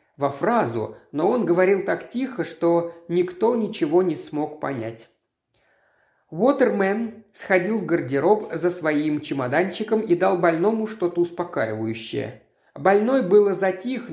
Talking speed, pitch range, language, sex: 120 wpm, 165-215 Hz, Russian, male